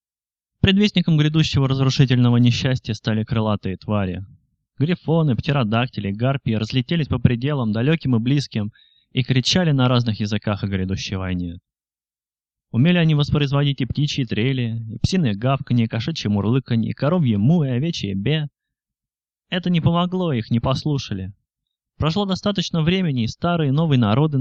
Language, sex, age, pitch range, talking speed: Russian, male, 20-39, 110-150 Hz, 140 wpm